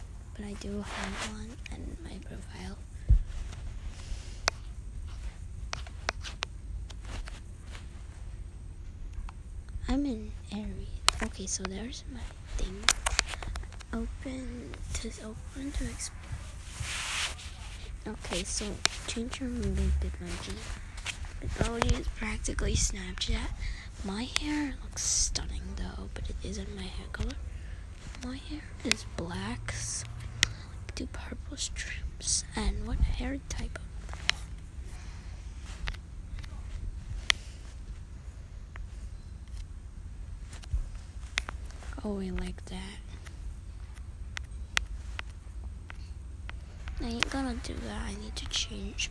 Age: 20-39